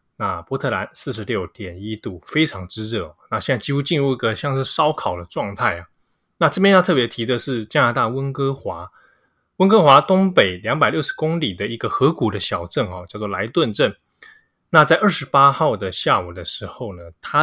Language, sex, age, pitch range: Chinese, male, 20-39, 105-145 Hz